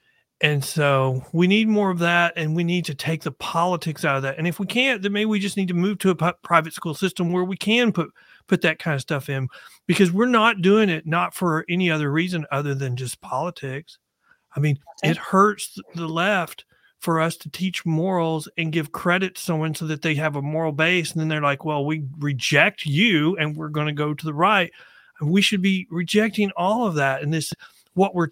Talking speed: 230 wpm